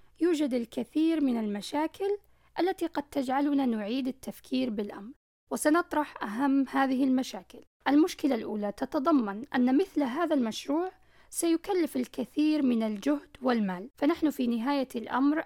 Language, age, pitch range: Arabic, 10-29, 250-315 Hz